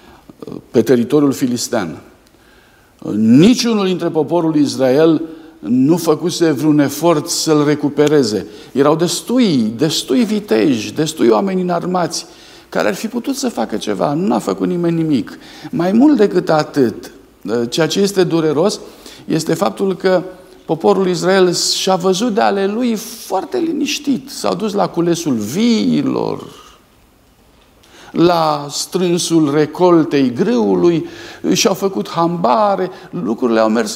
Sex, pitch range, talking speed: male, 160-210 Hz, 120 wpm